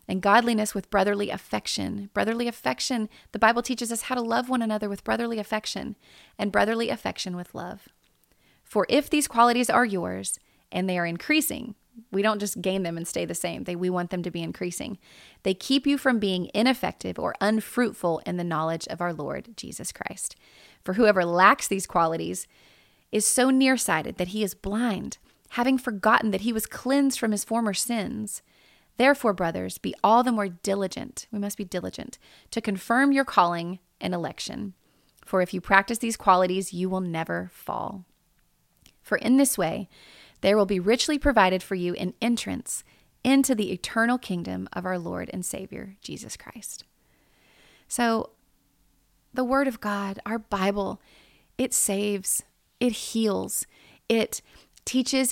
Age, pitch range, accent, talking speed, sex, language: 30-49, 185-235 Hz, American, 165 wpm, female, English